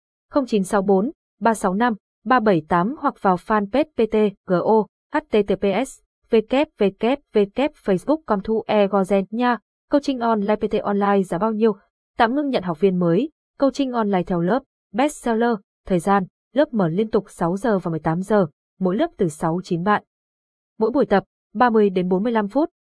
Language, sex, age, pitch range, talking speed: Vietnamese, female, 20-39, 195-245 Hz, 145 wpm